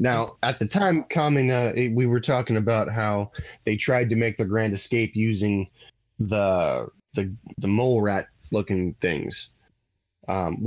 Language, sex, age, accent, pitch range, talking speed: English, male, 20-39, American, 110-130 Hz, 145 wpm